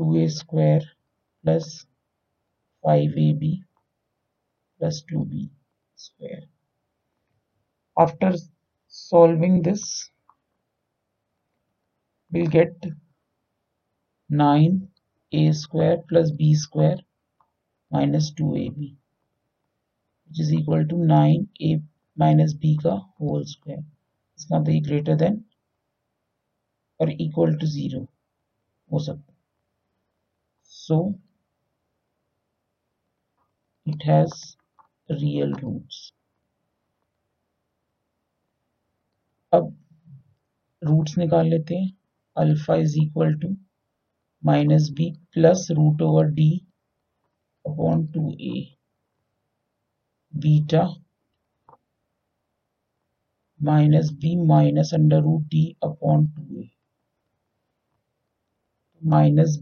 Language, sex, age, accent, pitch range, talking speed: Hindi, male, 50-69, native, 145-165 Hz, 75 wpm